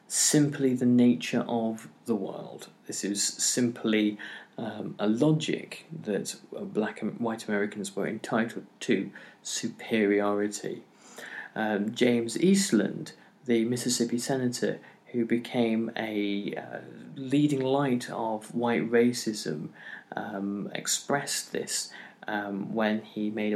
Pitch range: 110-155 Hz